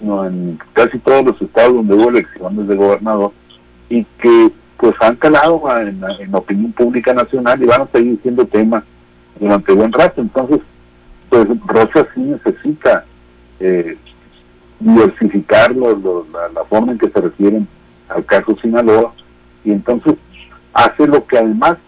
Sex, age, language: male, 60-79, Spanish